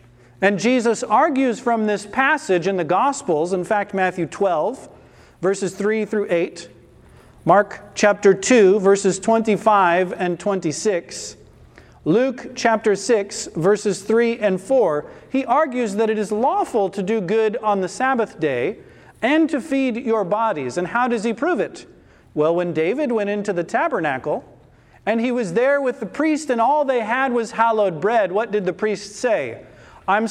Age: 40-59